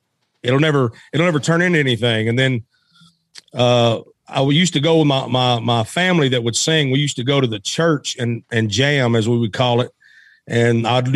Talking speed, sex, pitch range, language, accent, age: 205 wpm, male, 125-150 Hz, English, American, 50-69